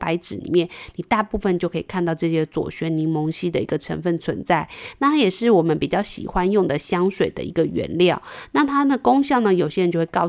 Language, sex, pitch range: Chinese, female, 170-260 Hz